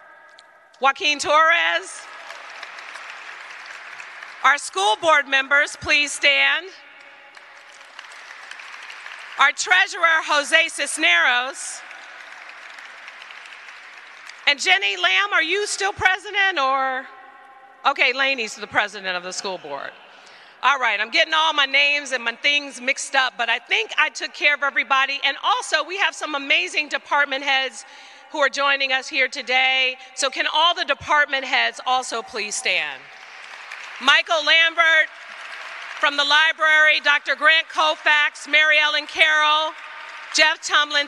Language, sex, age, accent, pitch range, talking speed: English, female, 40-59, American, 270-320 Hz, 125 wpm